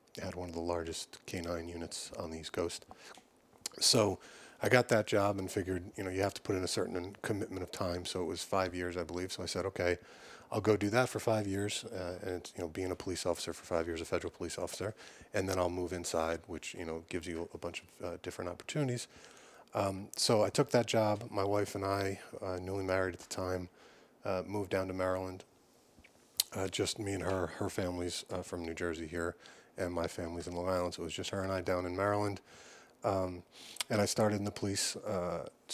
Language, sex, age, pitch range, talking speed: English, male, 40-59, 90-100 Hz, 230 wpm